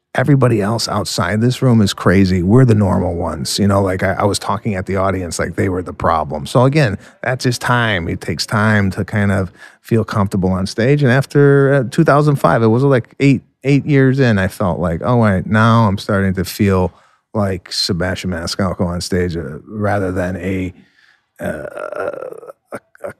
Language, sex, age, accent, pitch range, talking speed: English, male, 30-49, American, 90-110 Hz, 190 wpm